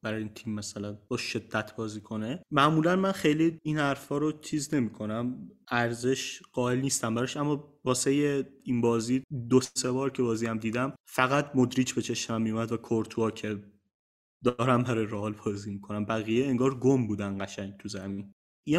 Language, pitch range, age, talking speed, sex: Persian, 115-135 Hz, 30-49, 165 wpm, male